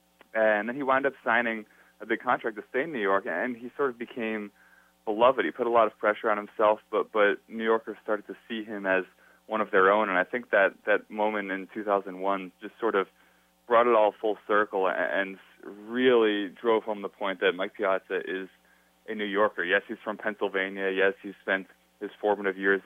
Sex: male